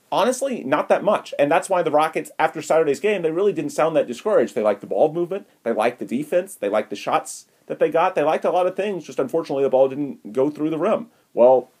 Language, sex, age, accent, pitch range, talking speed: English, male, 30-49, American, 120-165 Hz, 255 wpm